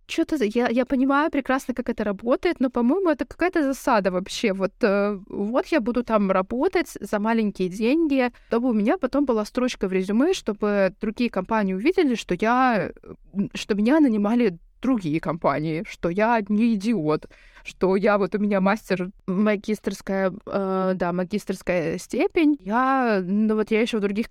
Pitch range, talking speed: 200-255 Hz, 160 wpm